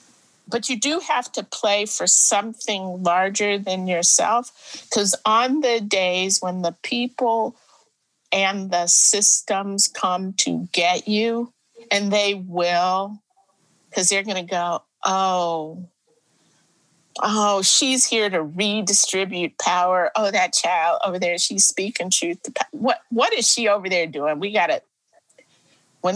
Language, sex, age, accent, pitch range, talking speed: English, female, 50-69, American, 170-235 Hz, 140 wpm